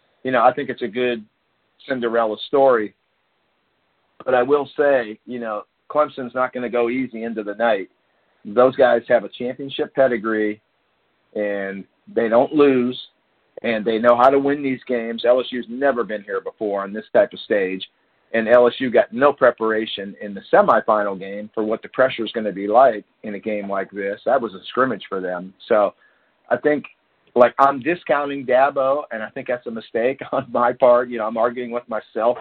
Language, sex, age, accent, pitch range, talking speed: English, male, 50-69, American, 110-140 Hz, 190 wpm